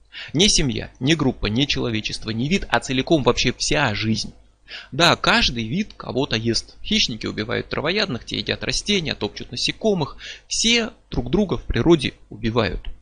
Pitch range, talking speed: 110-150 Hz, 150 wpm